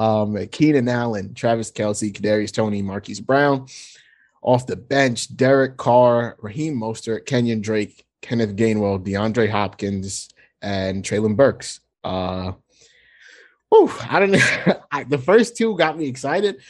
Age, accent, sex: 20-39, American, male